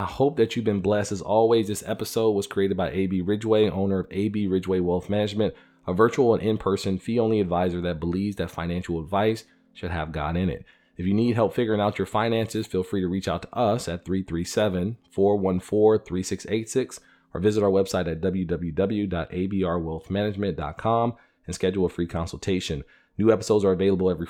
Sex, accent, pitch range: male, American, 90-105 Hz